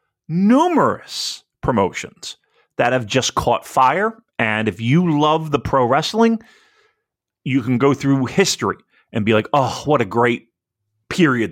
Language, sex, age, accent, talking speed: English, male, 40-59, American, 140 wpm